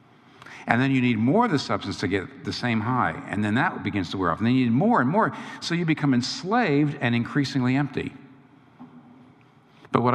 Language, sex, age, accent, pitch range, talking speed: English, male, 60-79, American, 120-145 Hz, 215 wpm